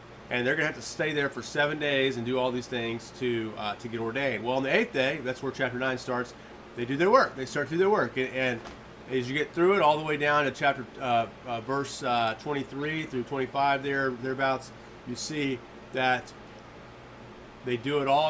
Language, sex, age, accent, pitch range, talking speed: English, male, 40-59, American, 115-135 Hz, 230 wpm